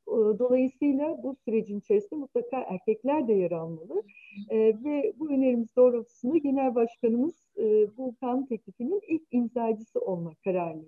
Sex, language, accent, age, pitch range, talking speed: female, Turkish, native, 60-79, 210-295 Hz, 130 wpm